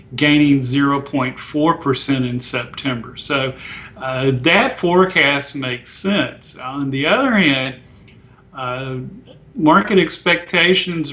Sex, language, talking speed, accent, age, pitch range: male, English, 95 wpm, American, 40-59, 130-155 Hz